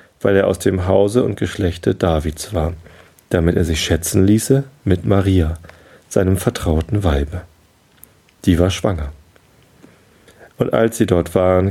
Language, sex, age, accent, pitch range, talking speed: German, male, 40-59, German, 85-110 Hz, 140 wpm